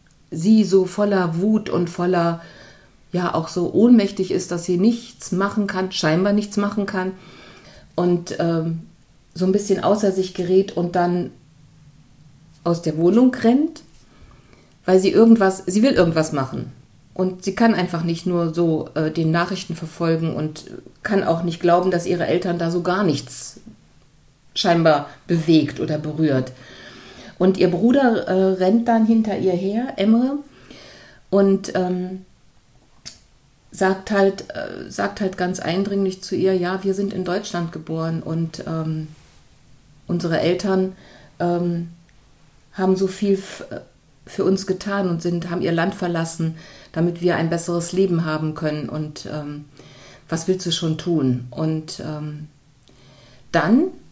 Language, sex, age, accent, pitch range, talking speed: German, female, 50-69, German, 160-190 Hz, 140 wpm